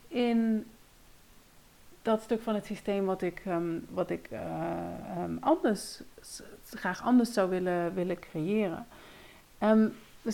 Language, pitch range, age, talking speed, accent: Dutch, 190-235 Hz, 40-59, 130 wpm, Dutch